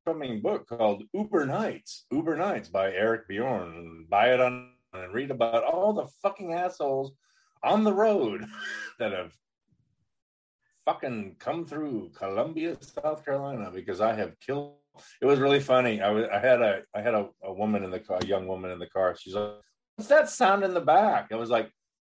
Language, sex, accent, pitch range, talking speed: English, male, American, 105-165 Hz, 185 wpm